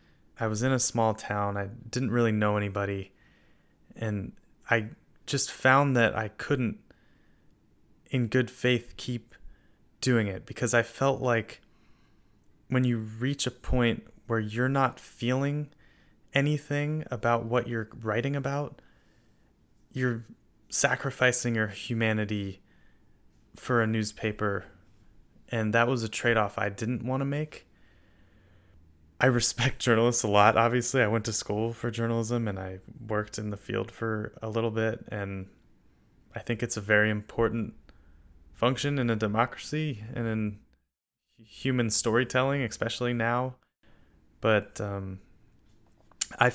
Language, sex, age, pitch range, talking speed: English, male, 20-39, 105-125 Hz, 130 wpm